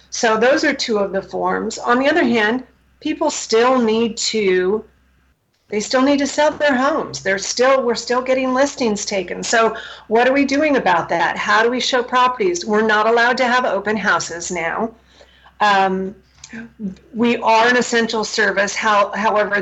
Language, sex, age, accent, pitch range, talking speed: English, female, 40-59, American, 195-235 Hz, 170 wpm